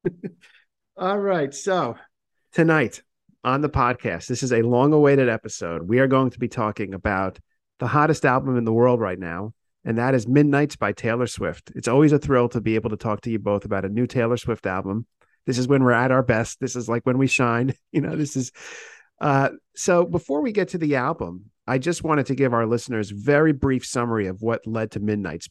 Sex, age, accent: male, 50-69, American